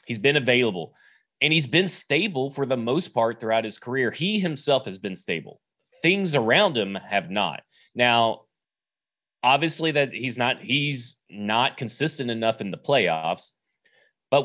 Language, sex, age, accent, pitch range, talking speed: English, male, 30-49, American, 115-145 Hz, 155 wpm